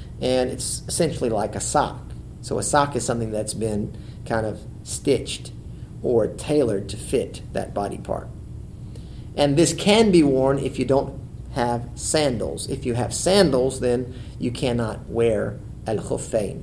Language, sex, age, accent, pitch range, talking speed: English, male, 40-59, American, 115-130 Hz, 150 wpm